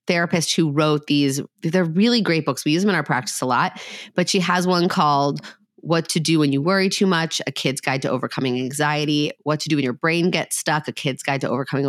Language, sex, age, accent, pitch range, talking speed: English, female, 30-49, American, 140-175 Hz, 235 wpm